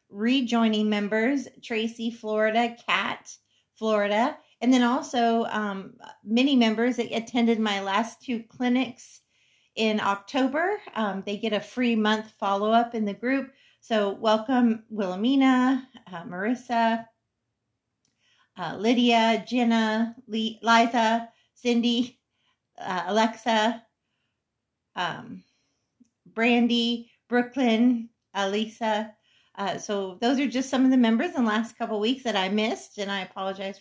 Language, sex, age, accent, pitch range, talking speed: English, female, 40-59, American, 215-250 Hz, 120 wpm